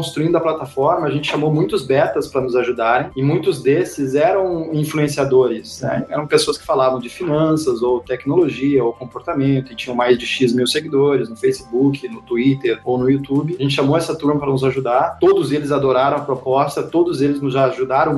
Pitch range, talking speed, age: 130-155 Hz, 190 wpm, 20-39